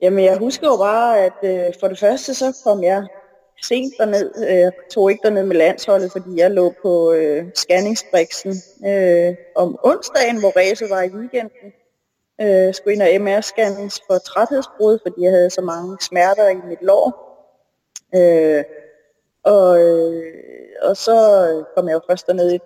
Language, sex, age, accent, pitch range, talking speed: Danish, female, 20-39, native, 170-205 Hz, 165 wpm